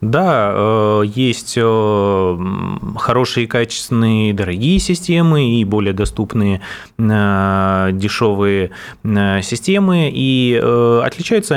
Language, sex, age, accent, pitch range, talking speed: Russian, male, 20-39, native, 100-125 Hz, 65 wpm